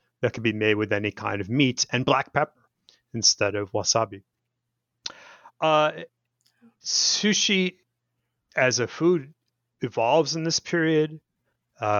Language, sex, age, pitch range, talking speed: English, male, 30-49, 115-145 Hz, 125 wpm